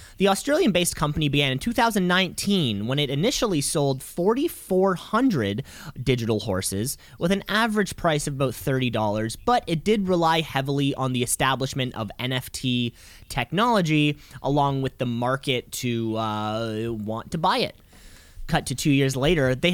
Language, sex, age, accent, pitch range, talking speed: English, male, 20-39, American, 130-190 Hz, 145 wpm